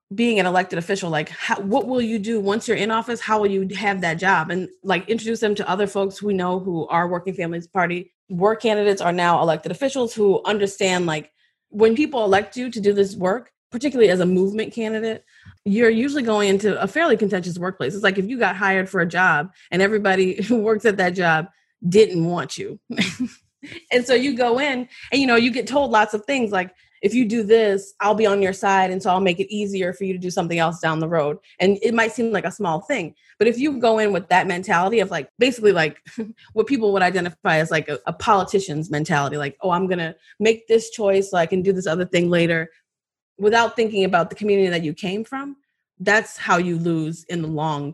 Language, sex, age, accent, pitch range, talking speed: English, female, 30-49, American, 180-225 Hz, 230 wpm